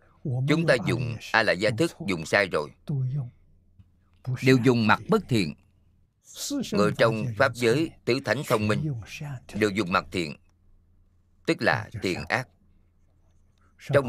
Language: Vietnamese